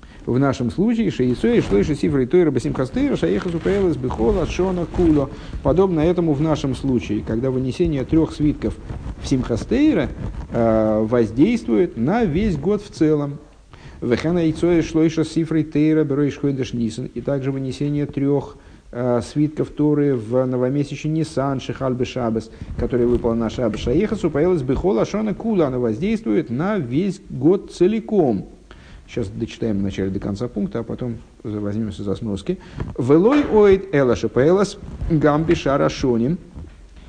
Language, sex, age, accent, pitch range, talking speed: Russian, male, 50-69, native, 115-160 Hz, 130 wpm